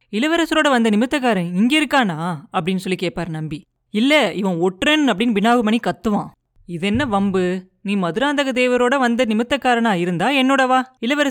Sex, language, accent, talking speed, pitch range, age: female, Tamil, native, 70 wpm, 185-250 Hz, 30-49